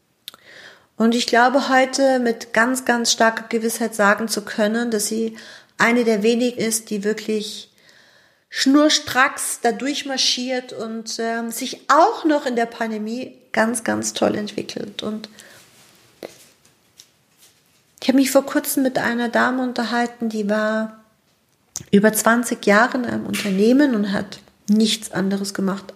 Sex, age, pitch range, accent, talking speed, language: female, 50-69, 205-240 Hz, German, 135 wpm, German